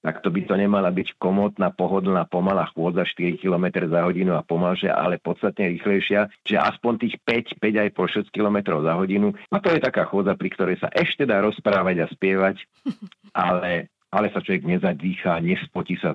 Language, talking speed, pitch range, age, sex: Slovak, 185 wpm, 85-105 Hz, 50-69, male